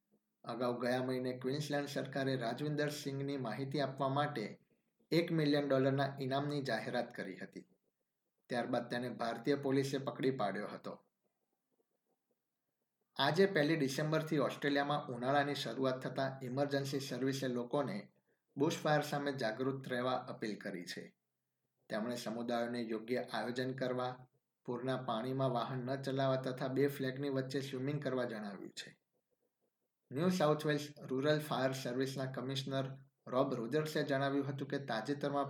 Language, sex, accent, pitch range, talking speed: Gujarati, male, native, 125-140 Hz, 125 wpm